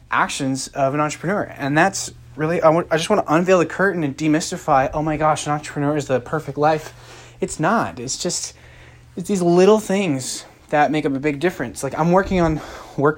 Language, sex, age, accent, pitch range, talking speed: English, male, 20-39, American, 120-150 Hz, 205 wpm